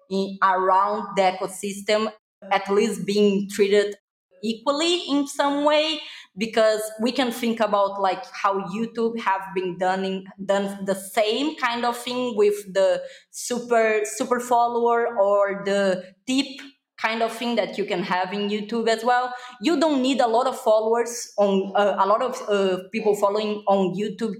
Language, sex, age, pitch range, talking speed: English, female, 20-39, 195-235 Hz, 155 wpm